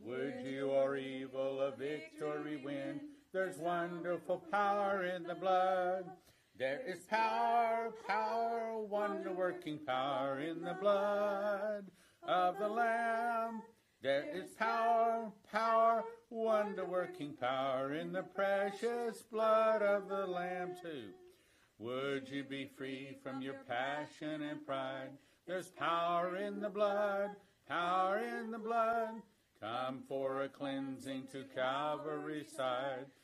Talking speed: 115 wpm